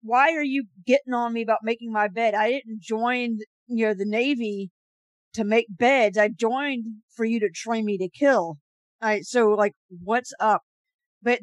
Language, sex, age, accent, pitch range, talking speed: English, female, 50-69, American, 200-250 Hz, 190 wpm